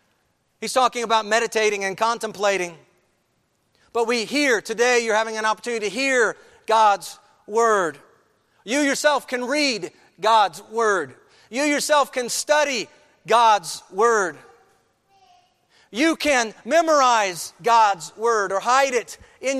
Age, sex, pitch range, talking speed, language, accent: 40-59, male, 160-260 Hz, 120 wpm, English, American